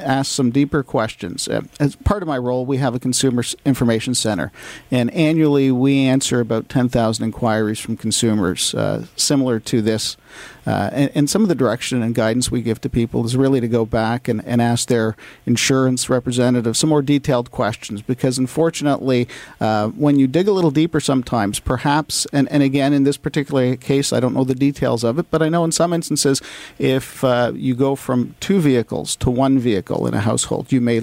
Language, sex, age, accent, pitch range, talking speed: English, male, 50-69, American, 120-145 Hz, 195 wpm